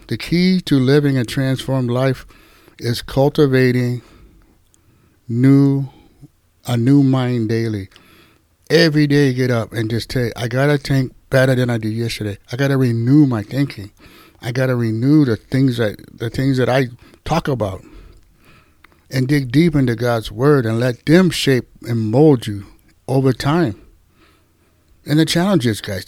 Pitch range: 110-155 Hz